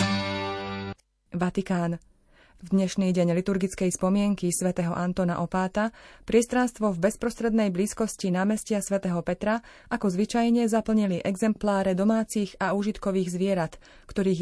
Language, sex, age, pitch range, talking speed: Slovak, female, 30-49, 180-215 Hz, 105 wpm